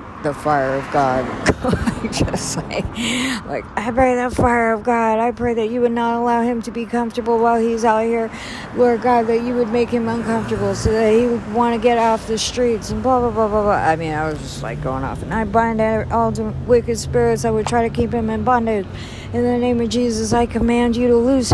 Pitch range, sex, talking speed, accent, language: 145-235 Hz, female, 235 wpm, American, English